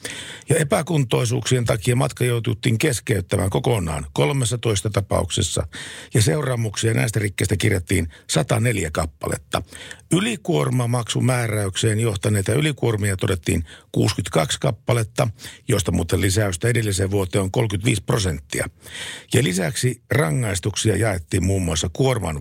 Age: 50-69